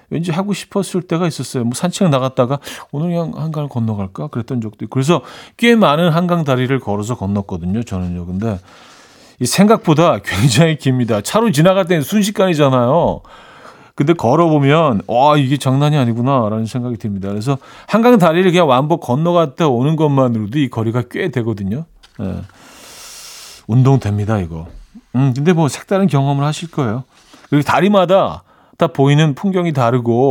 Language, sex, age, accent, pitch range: Korean, male, 40-59, native, 110-165 Hz